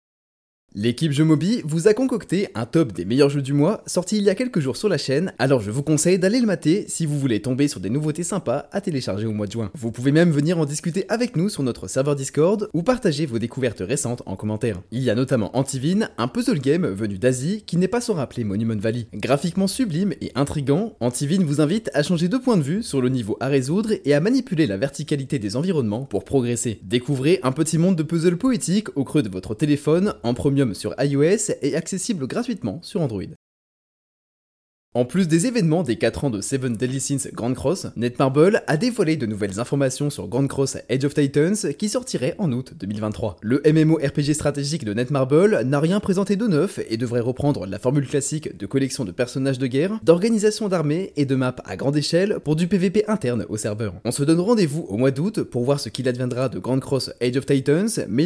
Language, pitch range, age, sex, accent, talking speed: French, 125-175 Hz, 20-39, male, French, 220 wpm